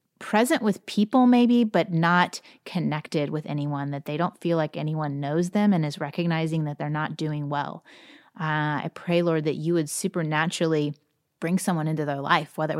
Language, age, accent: English, 30-49, American